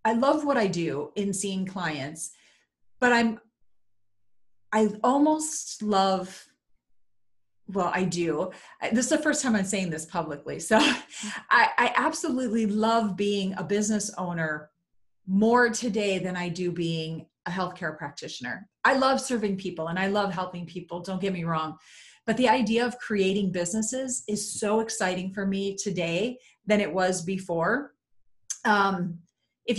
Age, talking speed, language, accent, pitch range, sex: 40-59, 150 wpm, English, American, 175-220 Hz, female